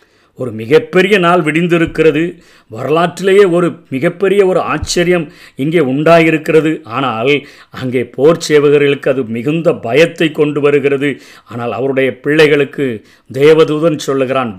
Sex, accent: male, native